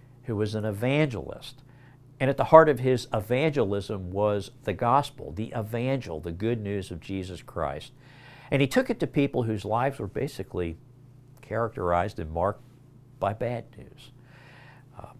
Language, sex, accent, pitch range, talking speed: English, male, American, 100-130 Hz, 155 wpm